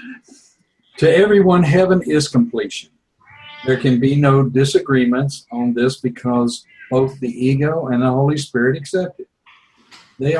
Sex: male